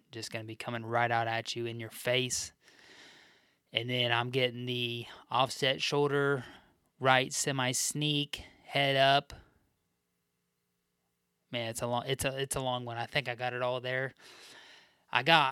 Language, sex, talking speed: English, male, 160 wpm